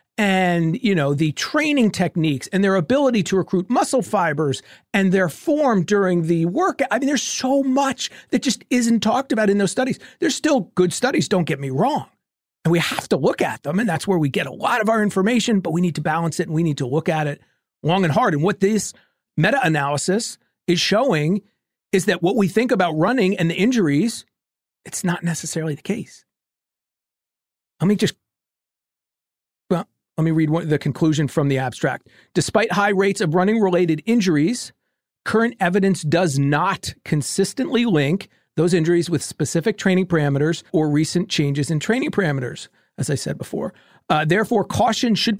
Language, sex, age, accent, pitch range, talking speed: English, male, 40-59, American, 155-215 Hz, 180 wpm